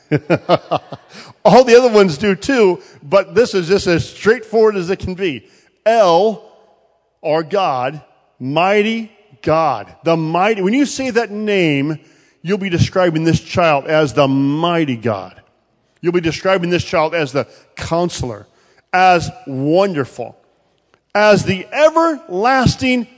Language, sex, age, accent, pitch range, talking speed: English, male, 40-59, American, 155-230 Hz, 130 wpm